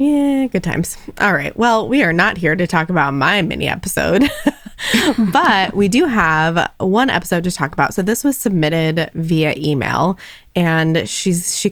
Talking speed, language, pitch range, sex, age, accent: 175 wpm, English, 160-210 Hz, female, 20-39, American